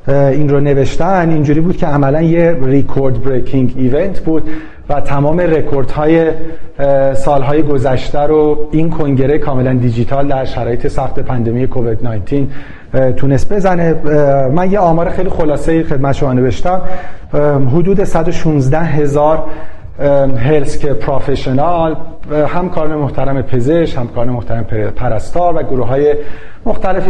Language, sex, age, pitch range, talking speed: Persian, male, 40-59, 130-160 Hz, 115 wpm